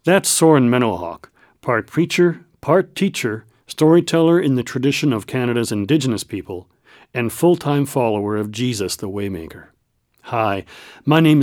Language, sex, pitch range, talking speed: English, male, 110-155 Hz, 130 wpm